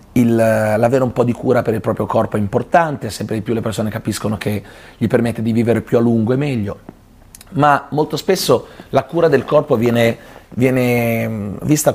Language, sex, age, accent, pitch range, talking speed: Italian, male, 30-49, native, 110-130 Hz, 190 wpm